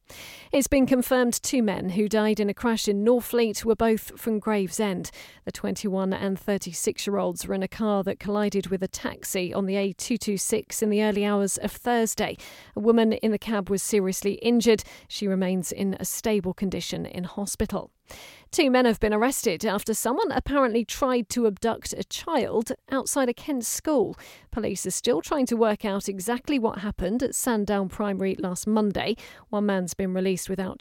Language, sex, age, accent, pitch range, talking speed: English, female, 40-59, British, 195-235 Hz, 175 wpm